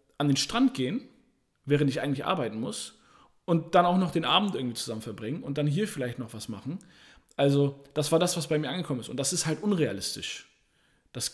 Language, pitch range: German, 135-170 Hz